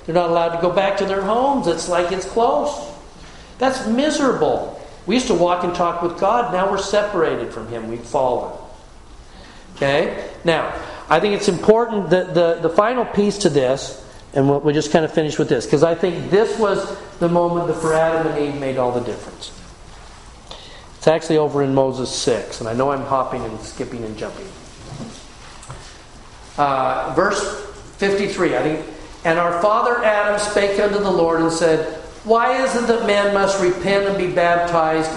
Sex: male